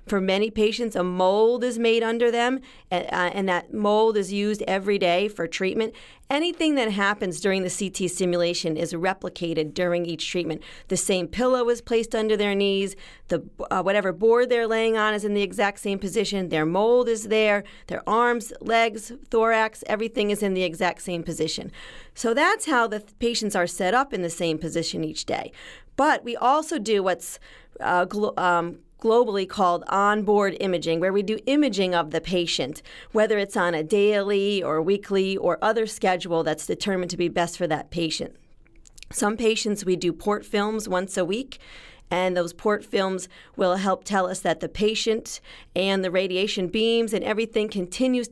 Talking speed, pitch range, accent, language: 185 wpm, 180-225 Hz, American, English